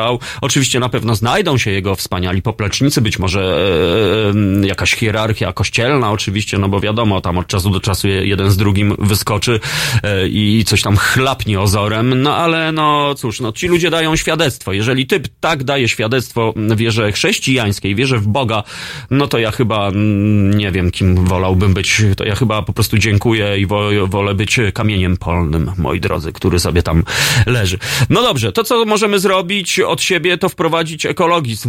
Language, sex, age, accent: Polish, male, 30-49, native